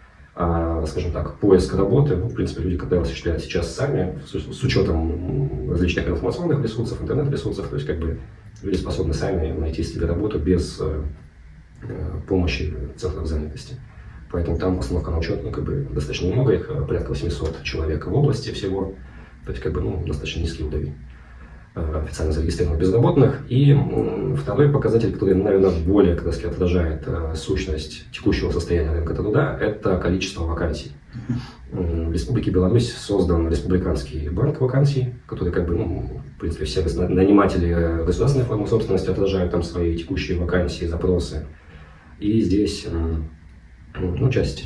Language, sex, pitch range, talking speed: Russian, male, 80-95 Hz, 135 wpm